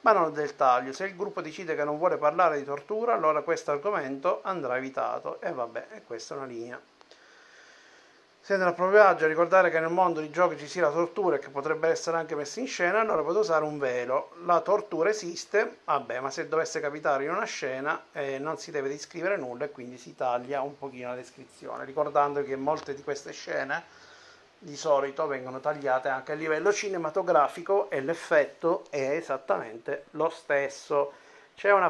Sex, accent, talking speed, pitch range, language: male, native, 190 wpm, 140-185 Hz, Italian